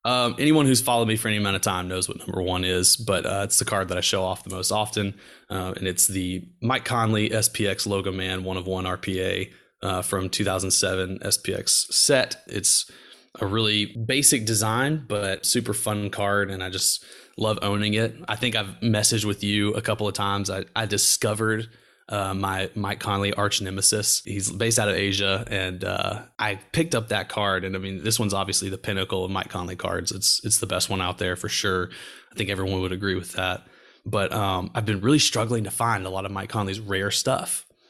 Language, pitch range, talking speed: English, 95-110 Hz, 210 wpm